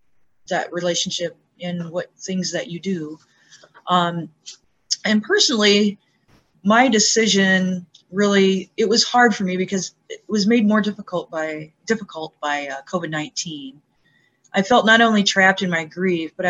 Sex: female